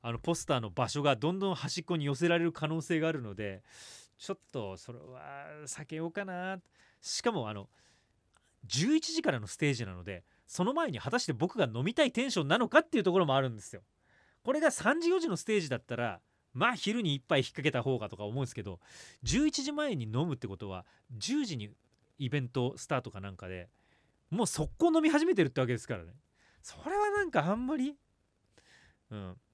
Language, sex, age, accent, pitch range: Japanese, male, 30-49, native, 105-170 Hz